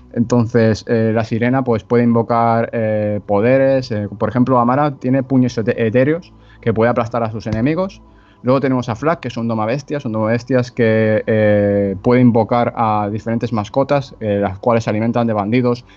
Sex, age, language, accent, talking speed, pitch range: male, 20-39, Spanish, Spanish, 185 wpm, 105-125 Hz